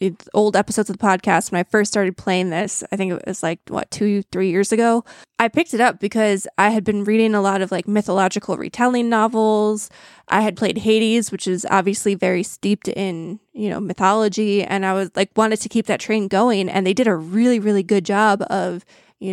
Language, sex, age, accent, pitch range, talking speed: English, female, 20-39, American, 190-220 Hz, 215 wpm